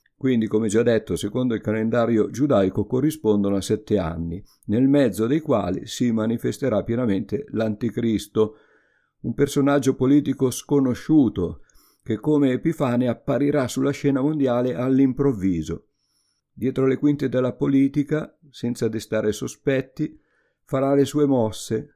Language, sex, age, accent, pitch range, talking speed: Italian, male, 50-69, native, 105-135 Hz, 120 wpm